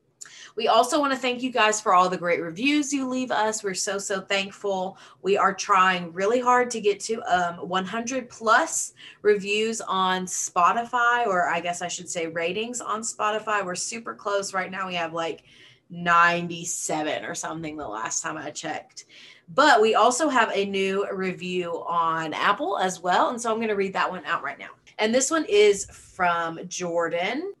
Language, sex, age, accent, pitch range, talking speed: English, female, 30-49, American, 175-230 Hz, 185 wpm